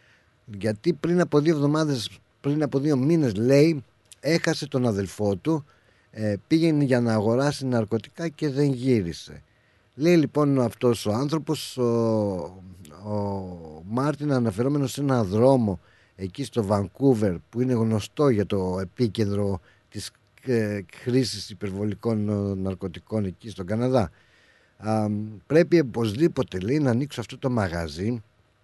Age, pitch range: 50-69, 105-140 Hz